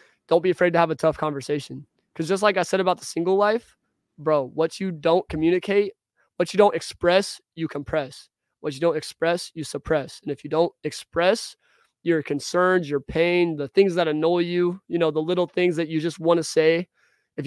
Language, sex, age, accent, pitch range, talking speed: English, male, 20-39, American, 155-180 Hz, 205 wpm